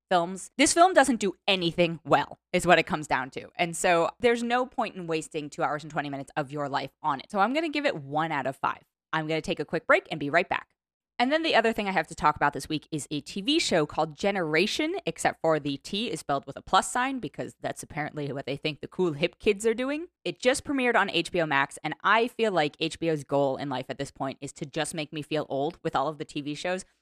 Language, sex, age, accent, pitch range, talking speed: English, female, 20-39, American, 145-200 Hz, 270 wpm